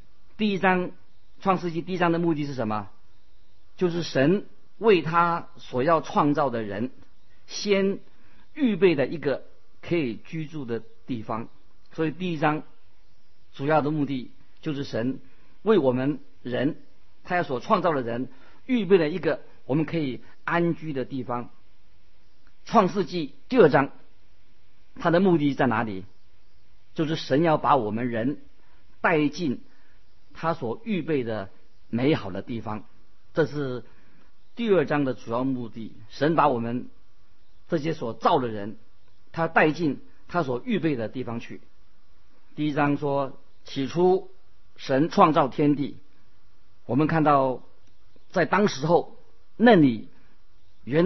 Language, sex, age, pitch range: Chinese, male, 50-69, 110-165 Hz